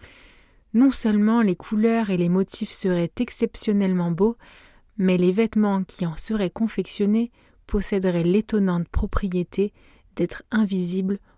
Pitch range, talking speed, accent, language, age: 180-225 Hz, 115 wpm, French, French, 30-49